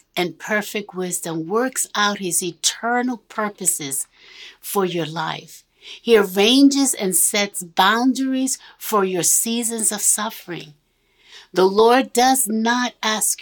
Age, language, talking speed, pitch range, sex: 60-79, English, 115 wpm, 175-230 Hz, female